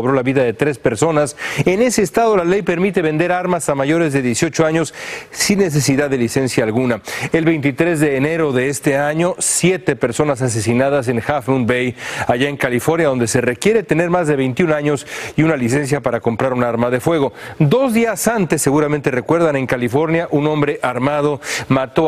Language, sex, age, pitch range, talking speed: Spanish, male, 40-59, 125-160 Hz, 185 wpm